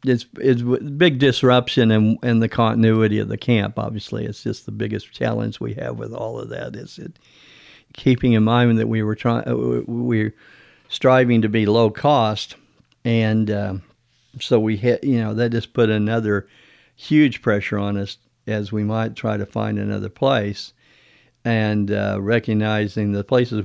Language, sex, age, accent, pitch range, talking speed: English, male, 50-69, American, 105-125 Hz, 165 wpm